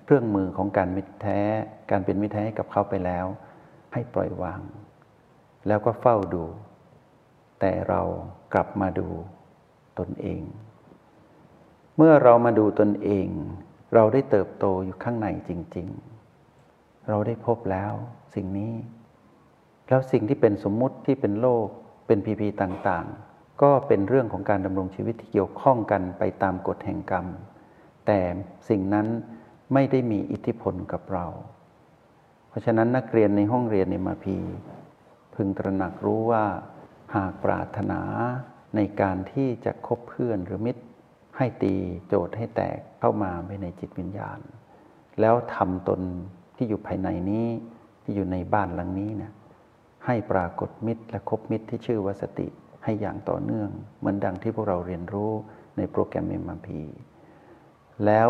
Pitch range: 95-115 Hz